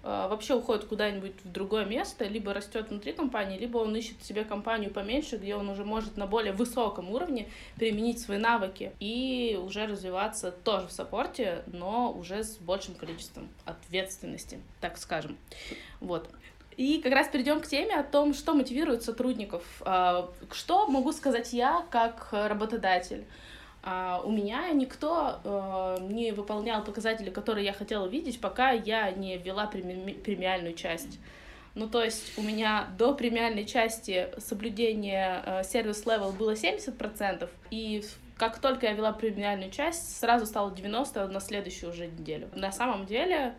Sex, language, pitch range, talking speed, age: female, Russian, 195-240 Hz, 140 wpm, 20-39